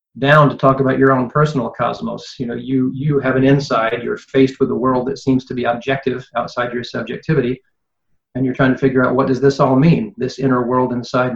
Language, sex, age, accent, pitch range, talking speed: English, male, 40-59, American, 125-135 Hz, 225 wpm